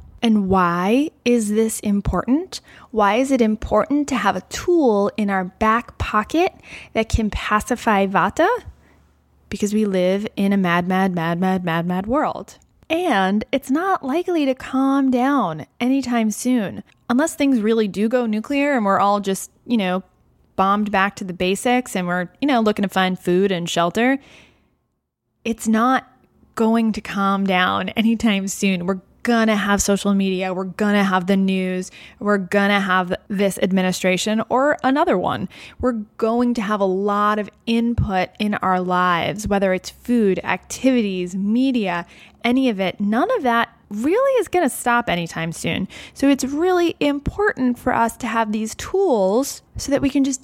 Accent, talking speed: American, 170 wpm